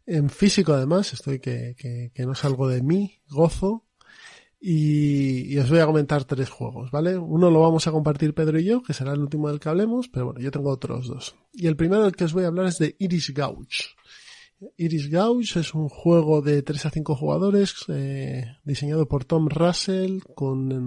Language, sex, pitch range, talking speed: Spanish, male, 140-185 Hz, 200 wpm